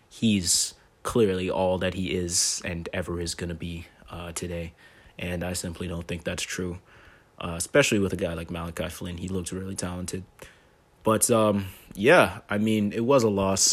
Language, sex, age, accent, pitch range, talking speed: English, male, 20-39, American, 90-105 Hz, 185 wpm